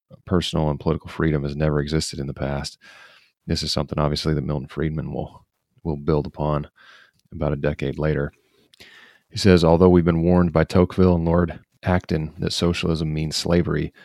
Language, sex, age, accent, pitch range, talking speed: English, male, 30-49, American, 75-85 Hz, 170 wpm